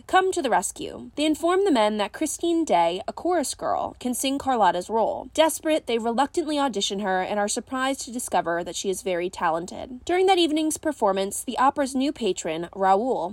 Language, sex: English, female